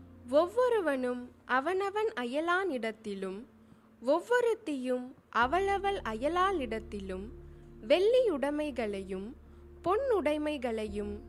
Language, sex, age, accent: Tamil, female, 20-39, native